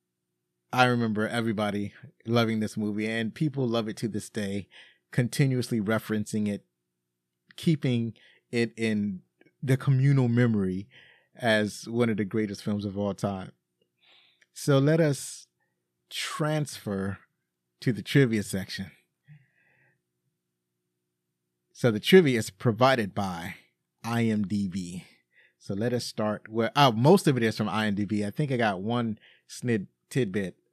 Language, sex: English, male